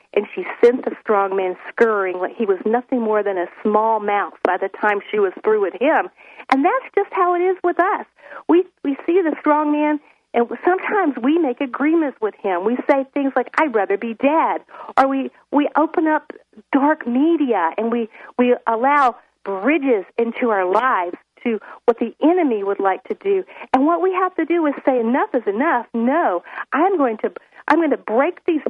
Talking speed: 200 wpm